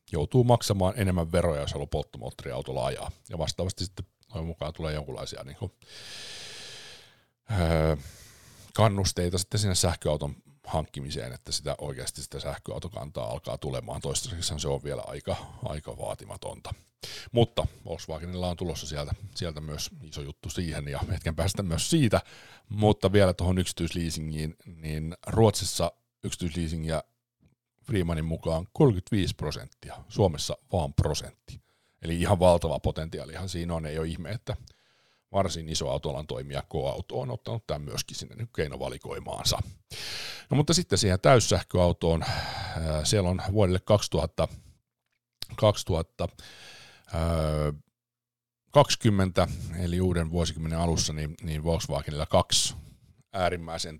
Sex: male